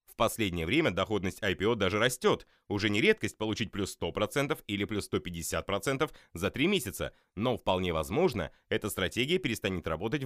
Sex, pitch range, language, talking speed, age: male, 95-140 Hz, Russian, 150 wpm, 30-49